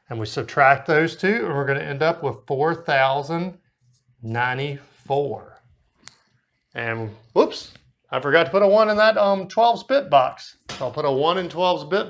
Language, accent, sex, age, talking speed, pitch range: English, American, male, 40-59, 175 wpm, 135-180 Hz